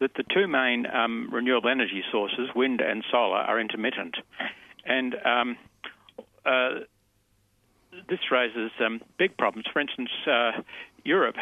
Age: 60-79